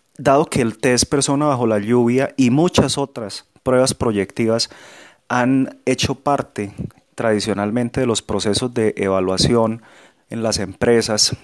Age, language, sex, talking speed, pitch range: 30-49, Spanish, male, 130 wpm, 105-130 Hz